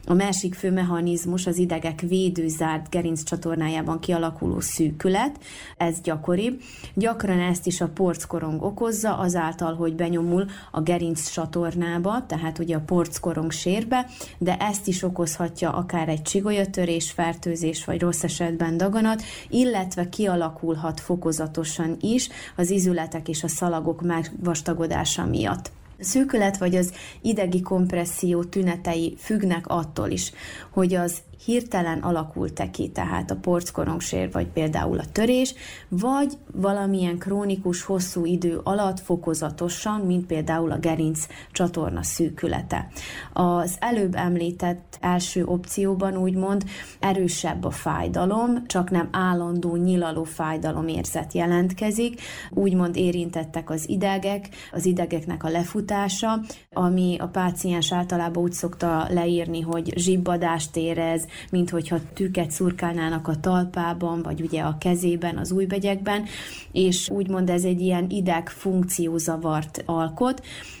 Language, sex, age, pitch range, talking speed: Hungarian, female, 30-49, 165-185 Hz, 115 wpm